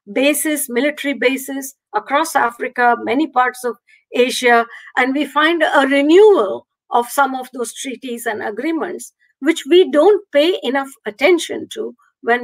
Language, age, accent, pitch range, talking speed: English, 50-69, Indian, 225-290 Hz, 140 wpm